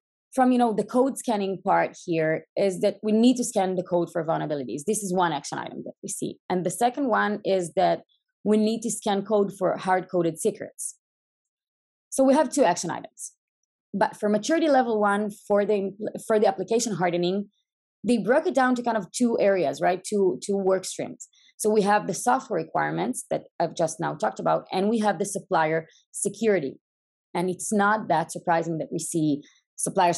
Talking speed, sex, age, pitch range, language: 195 wpm, female, 20-39, 170-215 Hz, English